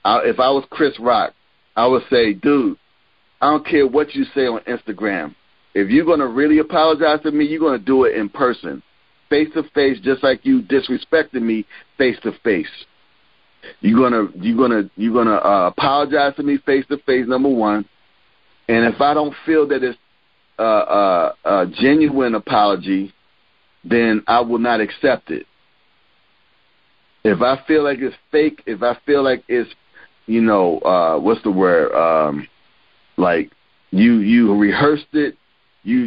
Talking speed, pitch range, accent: 165 wpm, 115-150 Hz, American